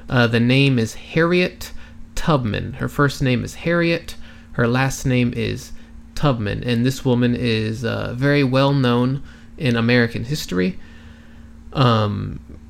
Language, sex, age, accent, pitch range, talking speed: Turkish, male, 30-49, American, 110-140 Hz, 130 wpm